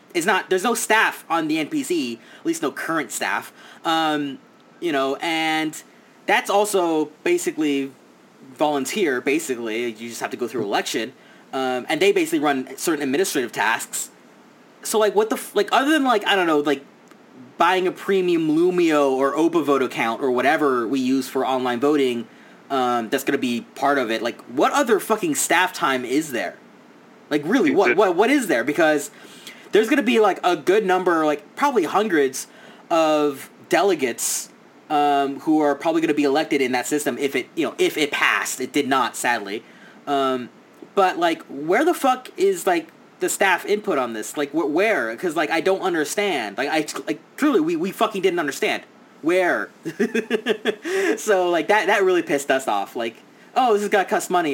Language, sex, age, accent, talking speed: English, male, 20-39, American, 185 wpm